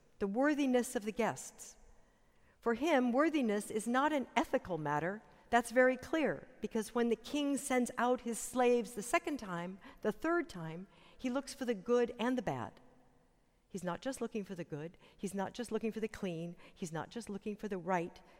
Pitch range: 190-255 Hz